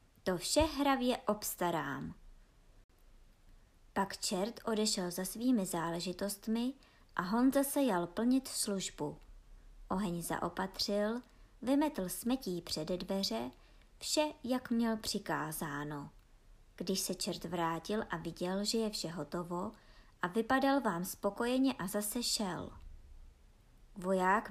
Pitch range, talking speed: 175-245 Hz, 110 wpm